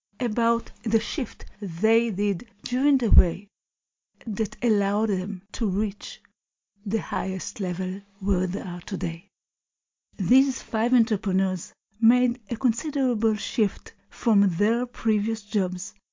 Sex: female